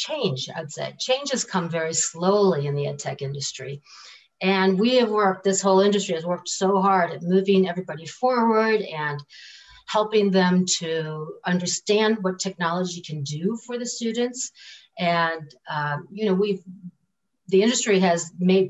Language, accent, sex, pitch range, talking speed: English, American, female, 160-205 Hz, 155 wpm